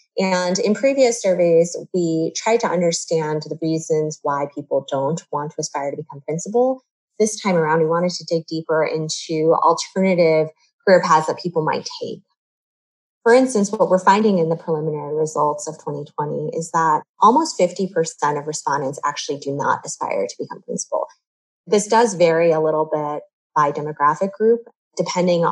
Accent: American